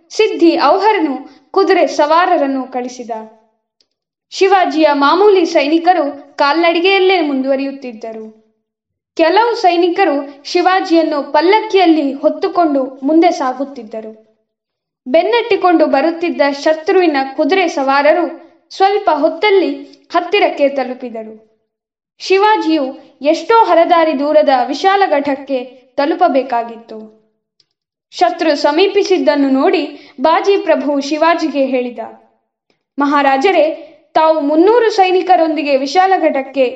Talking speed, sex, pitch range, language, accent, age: 70 wpm, female, 270-350 Hz, Kannada, native, 20-39